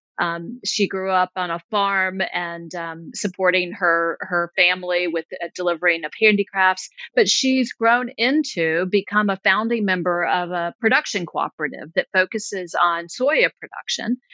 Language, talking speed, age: English, 145 wpm, 40-59